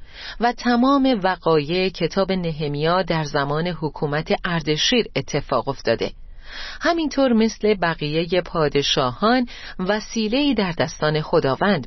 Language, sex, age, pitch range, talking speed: Persian, female, 40-59, 160-220 Hz, 95 wpm